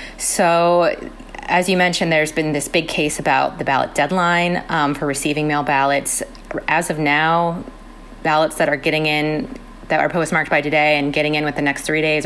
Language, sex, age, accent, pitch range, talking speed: English, female, 30-49, American, 145-170 Hz, 190 wpm